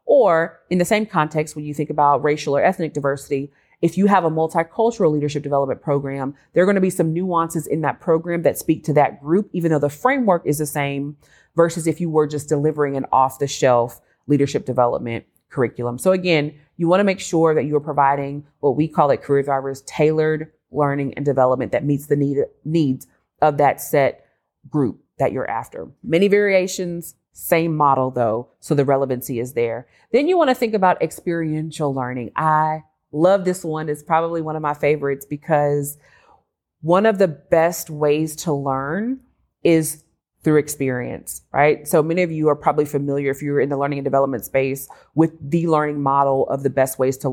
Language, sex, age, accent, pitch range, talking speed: English, female, 30-49, American, 140-165 Hz, 190 wpm